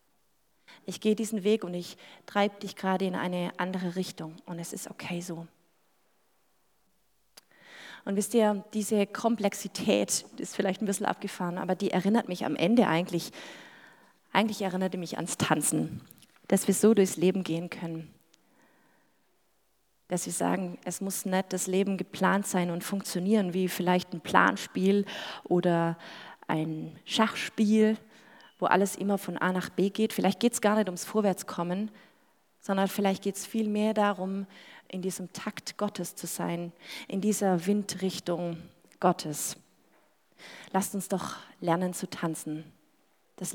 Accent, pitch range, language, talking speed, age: German, 180-205 Hz, German, 145 wpm, 30-49